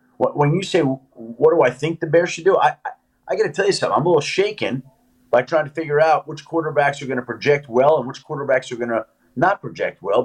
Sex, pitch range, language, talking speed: male, 125-175 Hz, English, 260 wpm